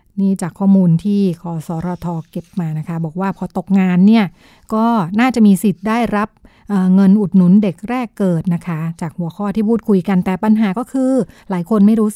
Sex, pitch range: female, 180-210 Hz